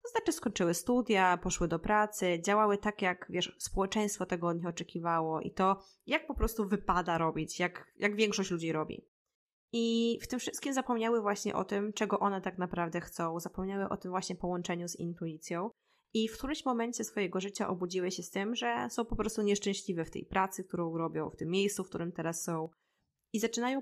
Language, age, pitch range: Polish, 20-39, 180-215 Hz